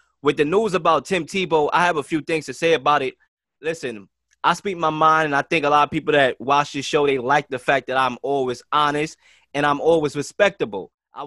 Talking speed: 235 wpm